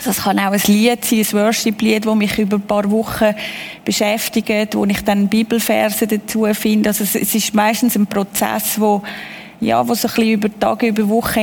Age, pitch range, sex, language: 30-49, 205-230 Hz, female, German